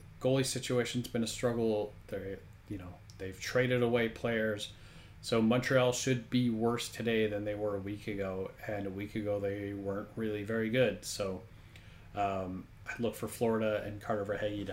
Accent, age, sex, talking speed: American, 30-49, male, 175 wpm